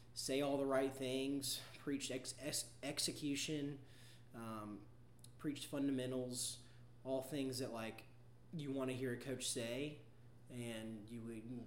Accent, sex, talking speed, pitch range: American, male, 125 wpm, 115-130 Hz